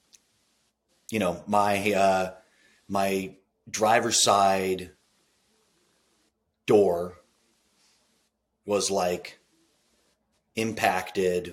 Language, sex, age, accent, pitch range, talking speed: English, male, 30-49, American, 85-105 Hz, 55 wpm